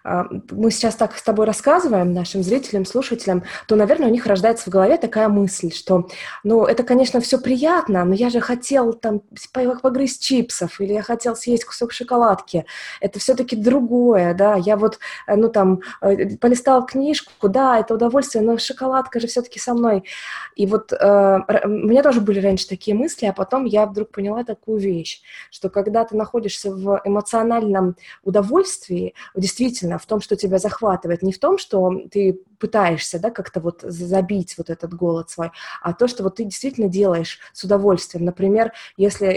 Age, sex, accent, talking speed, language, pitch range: 20-39, female, native, 165 wpm, Russian, 185-230 Hz